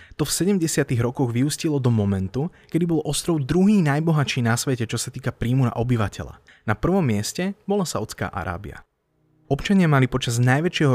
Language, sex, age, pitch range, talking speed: Slovak, male, 20-39, 110-160 Hz, 165 wpm